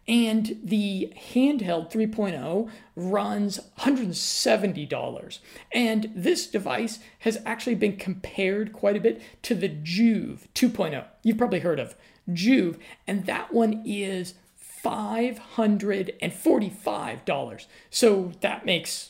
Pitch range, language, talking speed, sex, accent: 180-220 Hz, English, 105 wpm, male, American